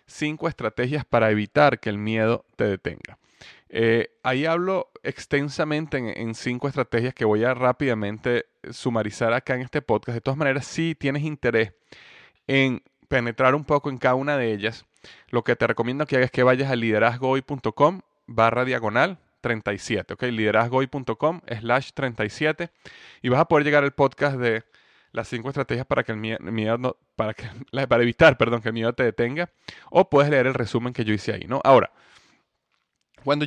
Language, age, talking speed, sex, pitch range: Spanish, 30-49, 160 wpm, male, 115-145 Hz